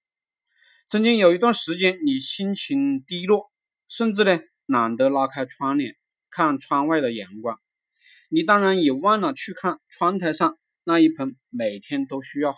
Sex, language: male, Chinese